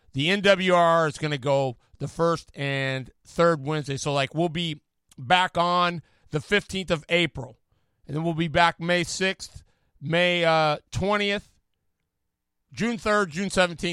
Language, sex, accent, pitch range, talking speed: English, male, American, 135-215 Hz, 145 wpm